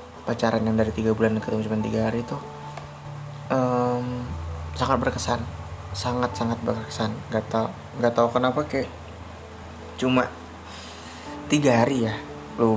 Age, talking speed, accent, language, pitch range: 20-39, 120 wpm, native, Indonesian, 105-120 Hz